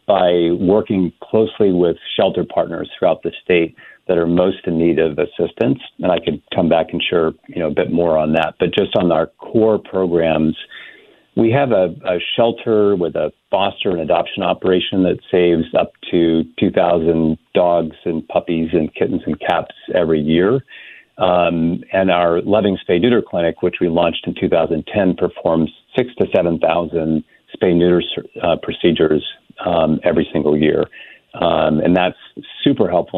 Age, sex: 50-69, male